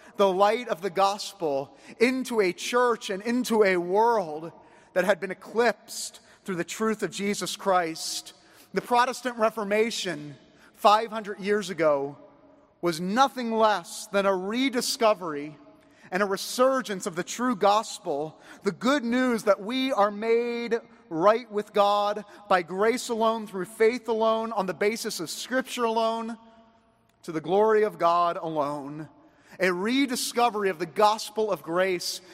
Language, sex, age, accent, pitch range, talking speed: English, male, 30-49, American, 185-230 Hz, 140 wpm